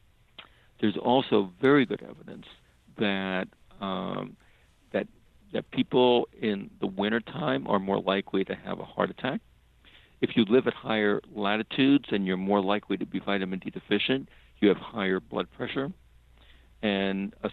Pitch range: 95-110 Hz